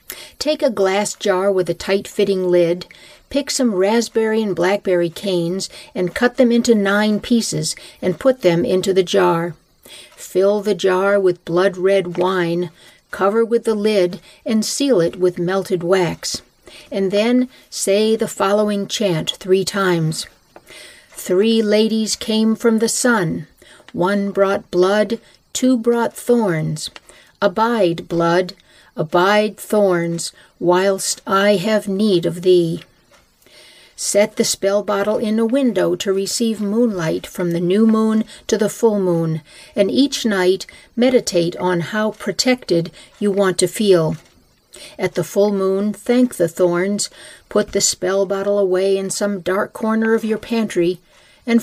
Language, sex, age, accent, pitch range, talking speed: English, female, 60-79, American, 180-220 Hz, 140 wpm